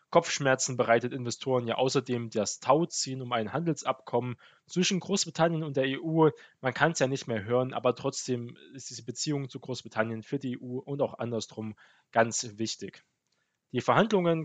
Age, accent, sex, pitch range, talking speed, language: 20-39, German, male, 120-145 Hz, 160 wpm, German